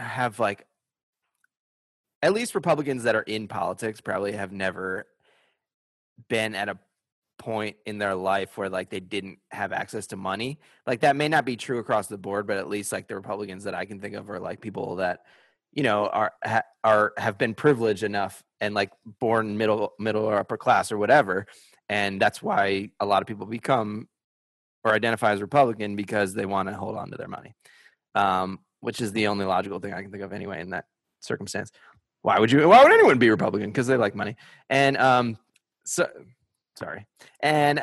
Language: English